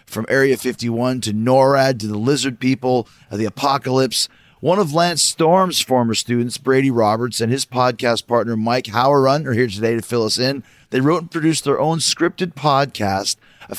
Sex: male